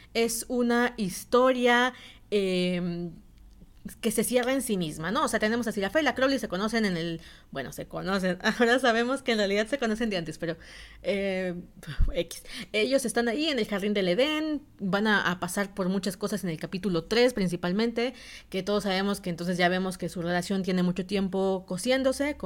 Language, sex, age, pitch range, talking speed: Spanish, female, 30-49, 185-240 Hz, 195 wpm